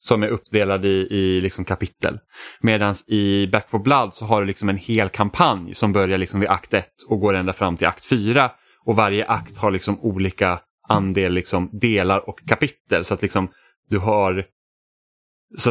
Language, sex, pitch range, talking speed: Swedish, male, 95-115 Hz, 185 wpm